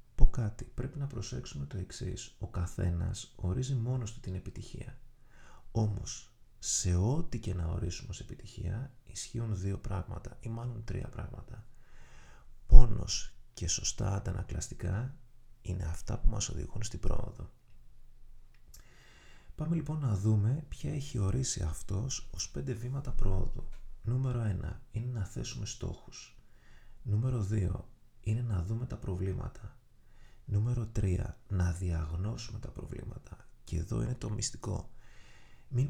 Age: 30-49